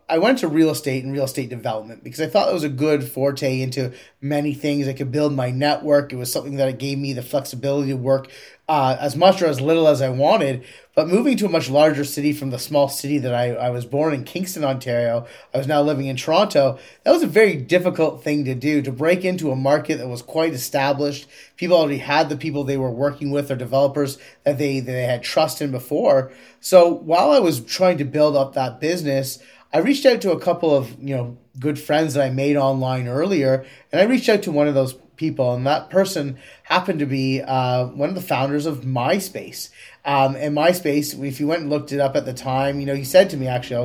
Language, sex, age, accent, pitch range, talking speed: English, male, 30-49, American, 135-160 Hz, 235 wpm